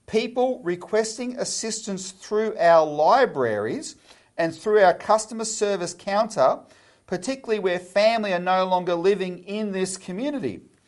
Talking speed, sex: 120 wpm, male